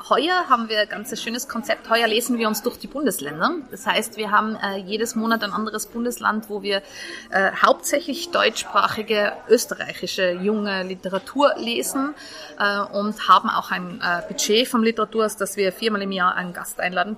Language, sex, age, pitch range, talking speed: German, female, 30-49, 190-230 Hz, 175 wpm